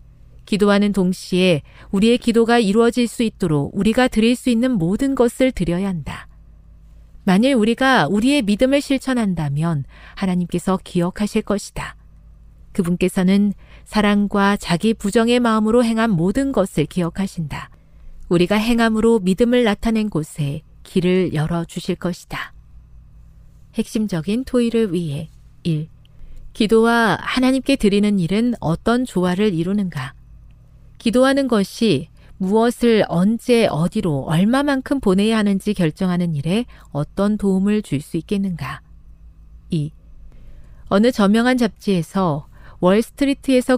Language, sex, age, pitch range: Korean, female, 40-59, 170-230 Hz